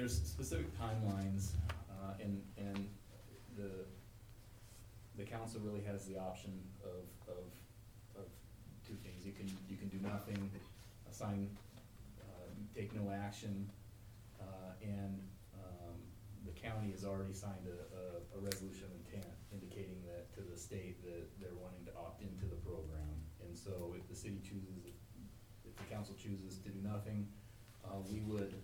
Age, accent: 30-49, American